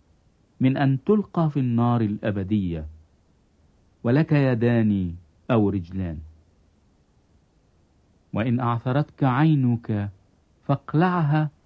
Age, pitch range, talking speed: 50-69, 90-140 Hz, 70 wpm